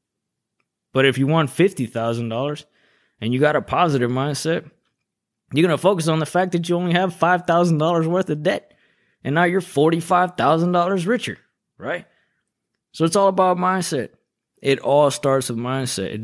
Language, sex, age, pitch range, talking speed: English, male, 20-39, 100-135 Hz, 160 wpm